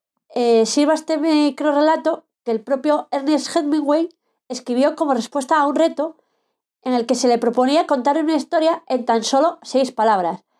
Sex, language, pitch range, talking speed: female, Spanish, 240-325 Hz, 165 wpm